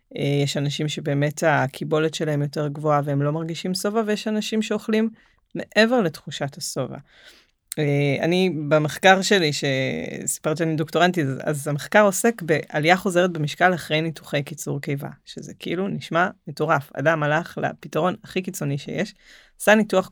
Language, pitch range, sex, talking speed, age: Hebrew, 145-190 Hz, female, 135 wpm, 30-49